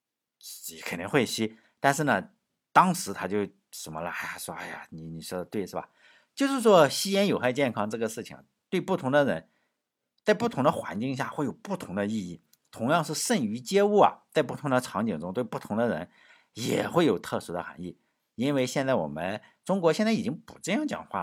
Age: 50-69